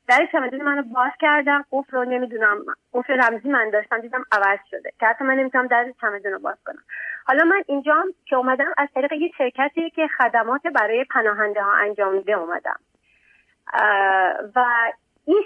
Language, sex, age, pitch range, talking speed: Persian, female, 30-49, 245-320 Hz, 165 wpm